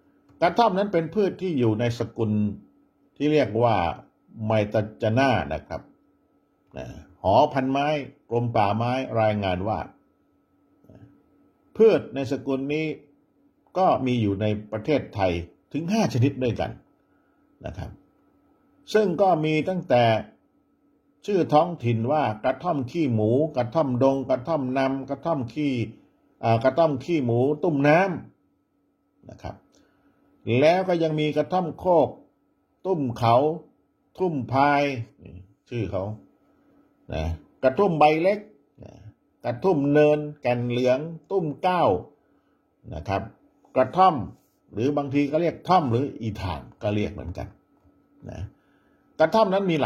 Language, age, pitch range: Thai, 60-79, 105-155 Hz